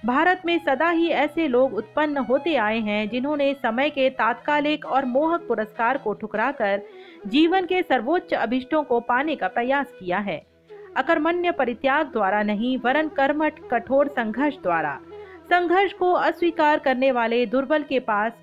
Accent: native